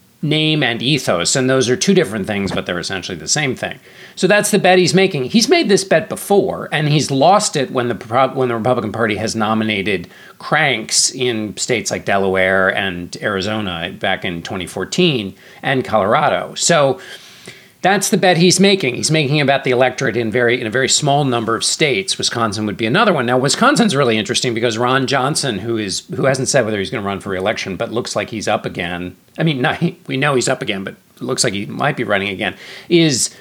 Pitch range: 105-160 Hz